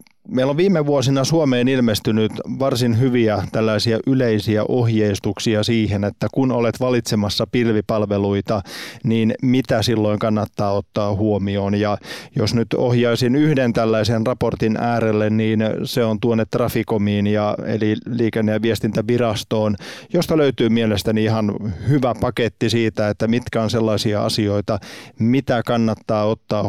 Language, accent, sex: Finnish, native, male